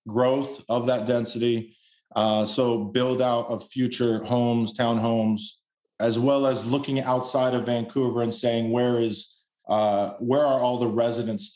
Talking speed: 150 wpm